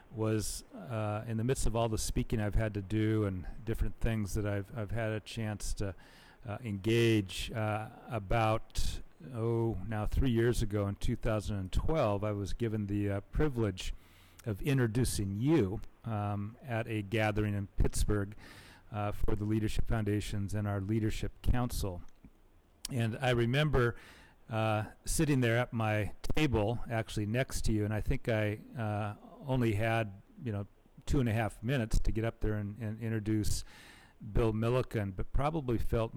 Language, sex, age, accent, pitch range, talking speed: English, male, 40-59, American, 100-115 Hz, 160 wpm